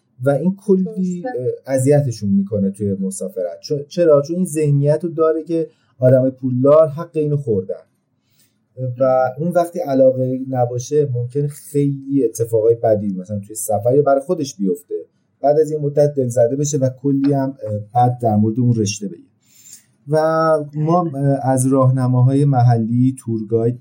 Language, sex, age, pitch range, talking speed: Persian, male, 30-49, 110-145 Hz, 140 wpm